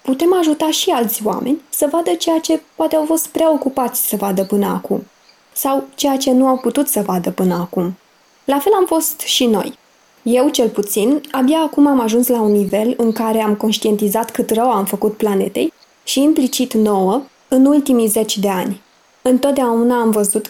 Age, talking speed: 20-39, 185 wpm